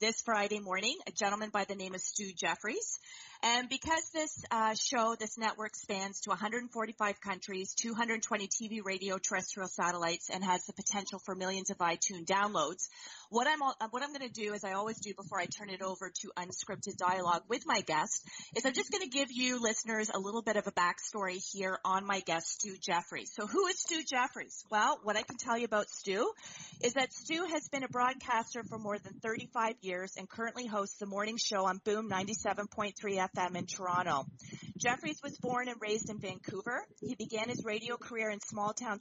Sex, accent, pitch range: female, American, 190-240 Hz